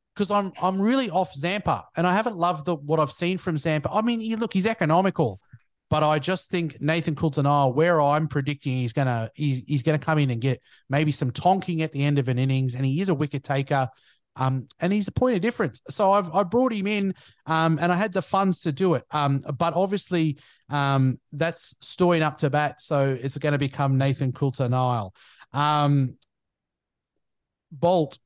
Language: English